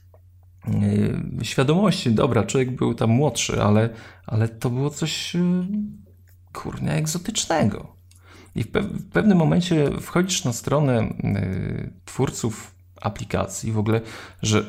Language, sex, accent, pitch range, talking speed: Polish, male, native, 95-130 Hz, 125 wpm